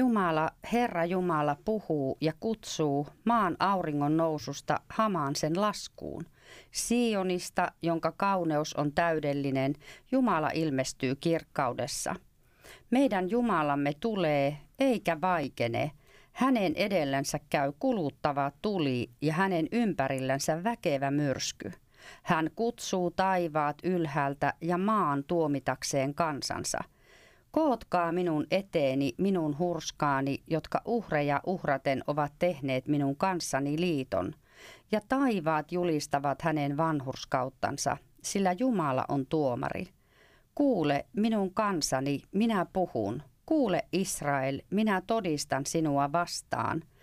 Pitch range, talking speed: 140-190 Hz, 95 wpm